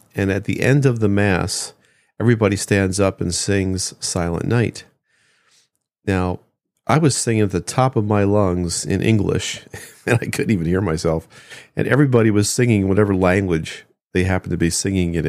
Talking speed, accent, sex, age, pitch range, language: 175 wpm, American, male, 40-59, 85-105 Hz, English